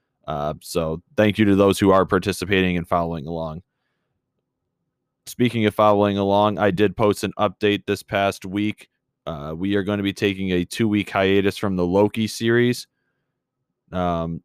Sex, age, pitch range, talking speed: male, 20-39, 90-105 Hz, 165 wpm